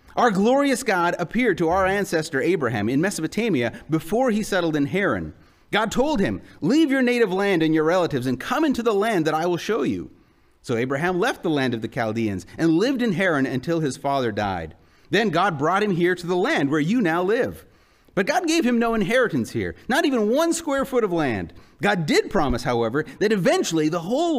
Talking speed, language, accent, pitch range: 210 wpm, English, American, 145-220 Hz